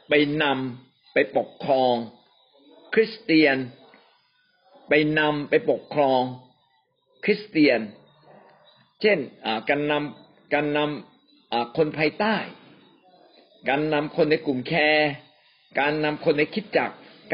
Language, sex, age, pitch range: Thai, male, 50-69, 130-175 Hz